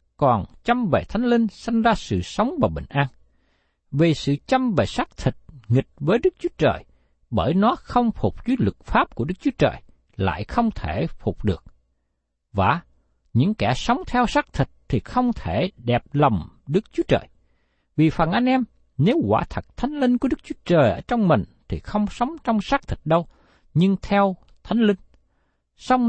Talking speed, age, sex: 190 wpm, 60-79, male